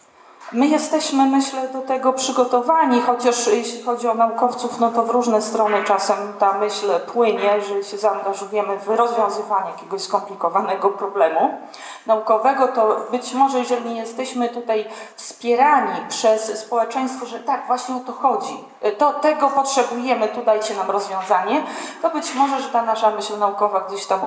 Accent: native